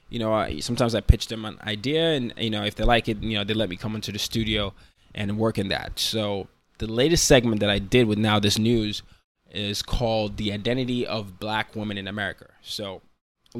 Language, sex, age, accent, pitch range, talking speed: English, male, 20-39, American, 100-120 Hz, 225 wpm